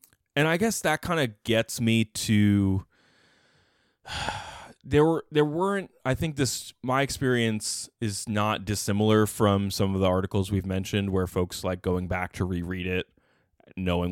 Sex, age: male, 20-39